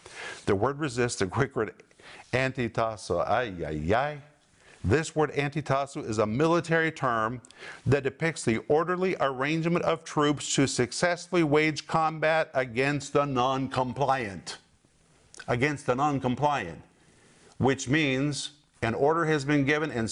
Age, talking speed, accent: 50-69, 125 wpm, American